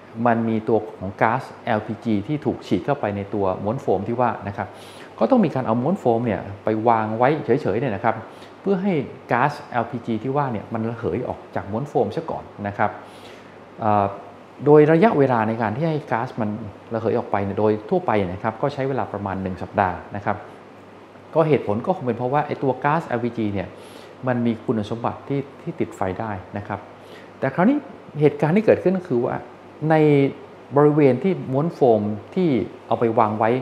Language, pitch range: Thai, 105-140 Hz